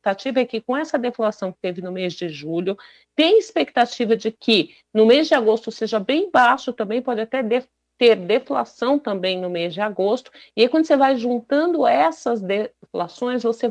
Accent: Brazilian